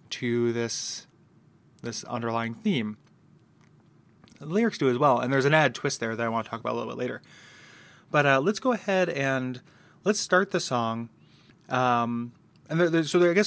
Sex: male